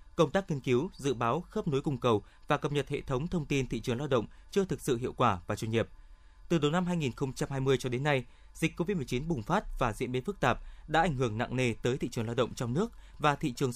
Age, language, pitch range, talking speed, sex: 20-39, Vietnamese, 115-165 Hz, 260 wpm, male